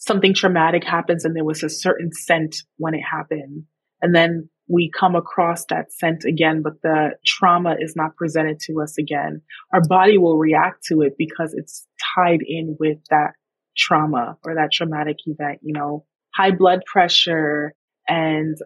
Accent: American